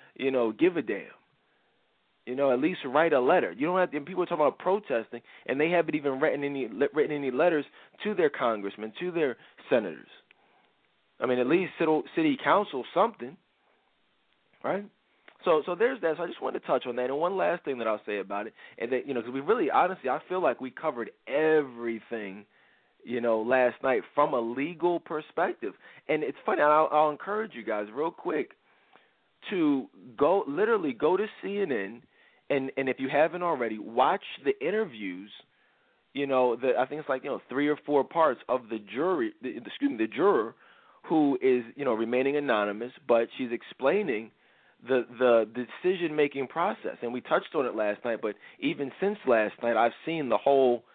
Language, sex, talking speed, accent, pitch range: English, male, 195 wpm, American, 125-195 Hz